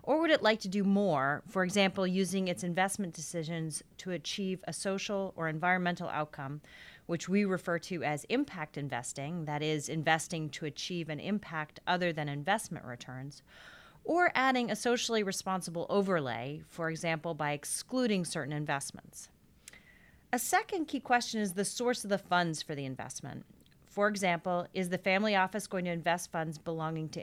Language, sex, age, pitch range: English, female, 30-49, 155-200 Hz